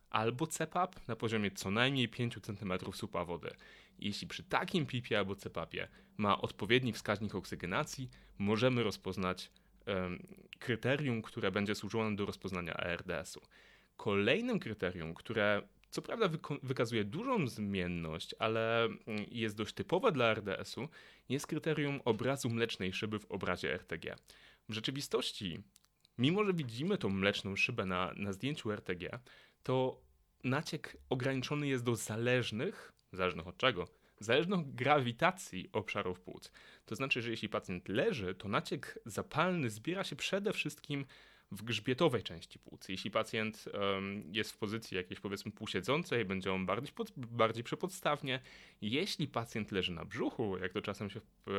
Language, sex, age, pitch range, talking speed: Polish, male, 30-49, 100-135 Hz, 140 wpm